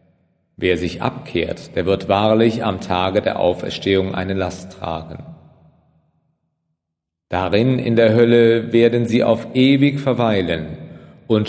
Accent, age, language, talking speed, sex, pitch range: German, 40-59, German, 120 wpm, male, 95-120 Hz